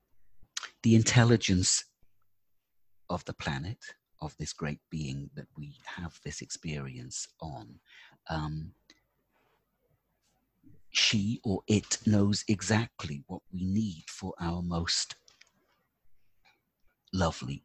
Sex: male